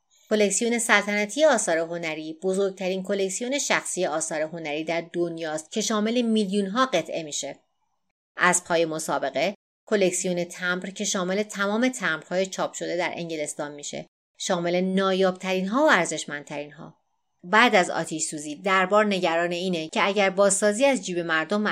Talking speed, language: 140 wpm, Persian